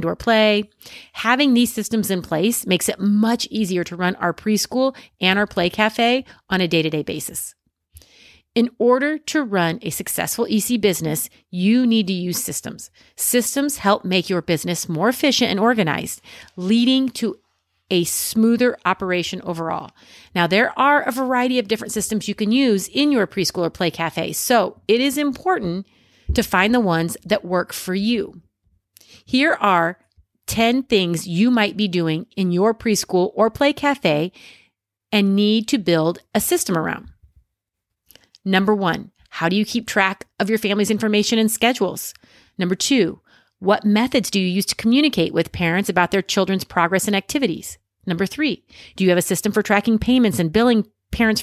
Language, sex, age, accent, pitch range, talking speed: English, female, 30-49, American, 180-235 Hz, 170 wpm